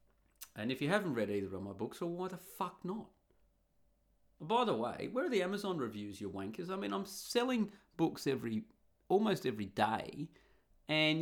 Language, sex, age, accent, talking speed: English, male, 30-49, Australian, 180 wpm